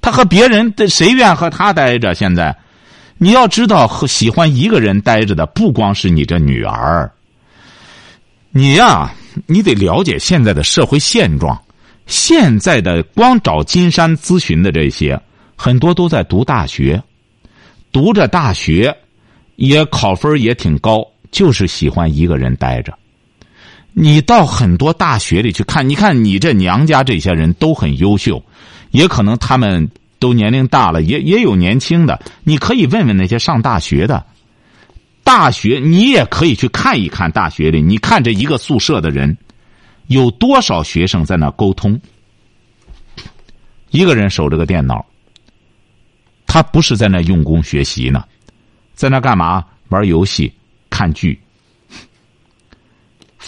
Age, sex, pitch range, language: 50-69, male, 90-150 Hz, Chinese